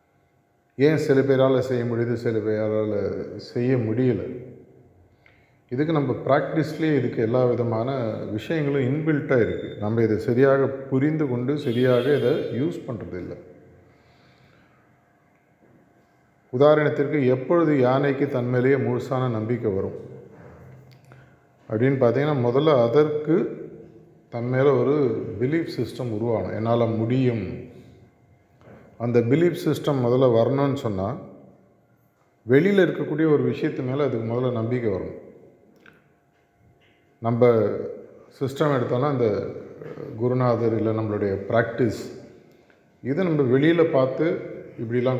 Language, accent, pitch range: Tamil, native, 115-140 Hz